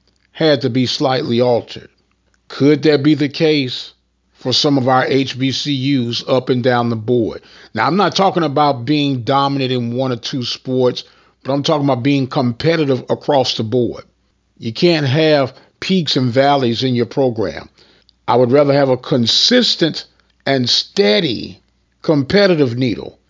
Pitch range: 125-165 Hz